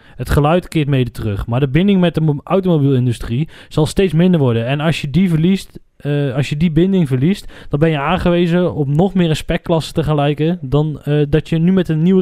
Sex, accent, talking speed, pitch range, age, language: male, Dutch, 215 wpm, 140-170 Hz, 20-39, Dutch